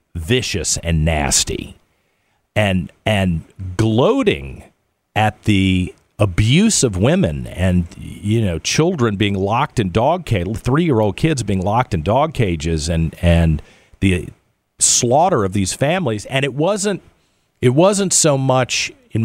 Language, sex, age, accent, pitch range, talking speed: English, male, 50-69, American, 85-110 Hz, 135 wpm